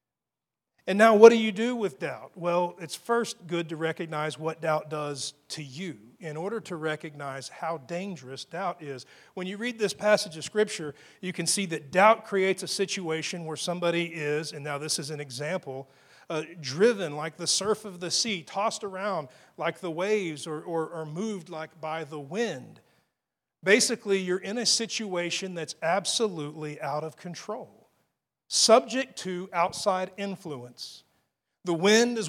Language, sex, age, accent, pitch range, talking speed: English, male, 40-59, American, 155-200 Hz, 165 wpm